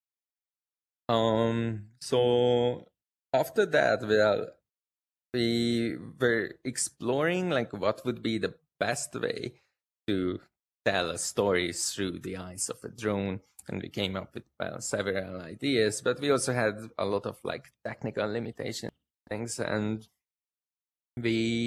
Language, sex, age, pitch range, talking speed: English, male, 20-39, 100-115 Hz, 125 wpm